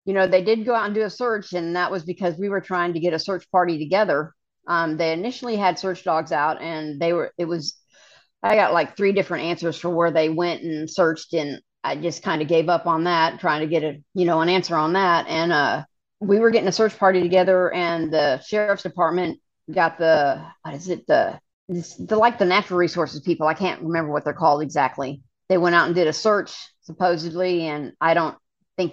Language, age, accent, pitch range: English, 50-69, American, 155-180 Hz